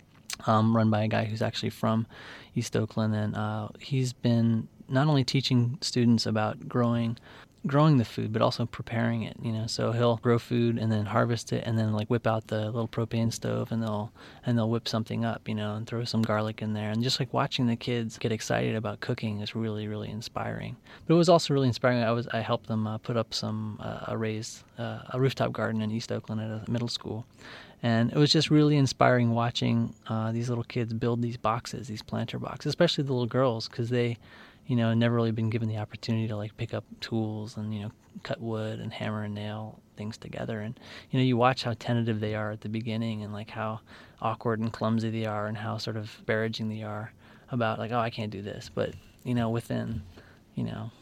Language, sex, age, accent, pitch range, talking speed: English, male, 20-39, American, 110-120 Hz, 225 wpm